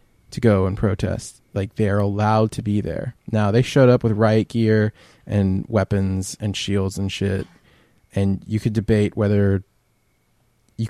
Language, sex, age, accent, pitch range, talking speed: English, male, 20-39, American, 100-115 Hz, 160 wpm